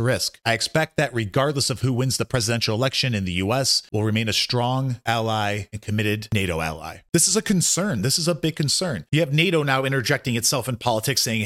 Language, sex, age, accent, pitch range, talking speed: English, male, 30-49, American, 115-150 Hz, 215 wpm